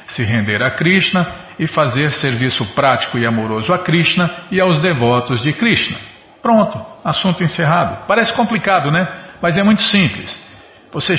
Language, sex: Portuguese, male